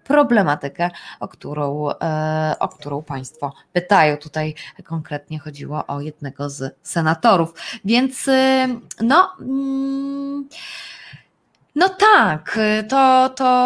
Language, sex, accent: Polish, female, native